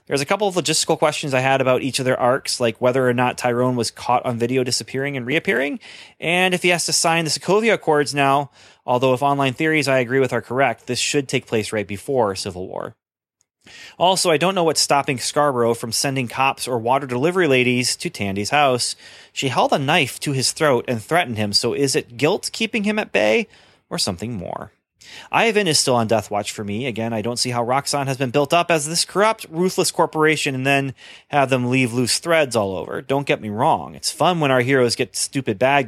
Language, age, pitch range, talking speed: English, 30-49, 120-155 Hz, 225 wpm